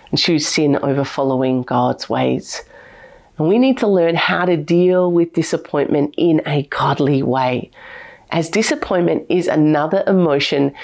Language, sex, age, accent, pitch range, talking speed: English, female, 40-59, Australian, 155-235 Hz, 145 wpm